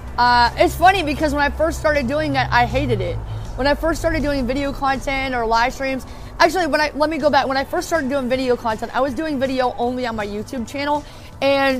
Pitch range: 250-295 Hz